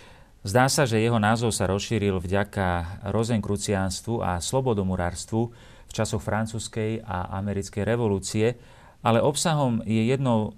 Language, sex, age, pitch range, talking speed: Slovak, male, 40-59, 95-115 Hz, 120 wpm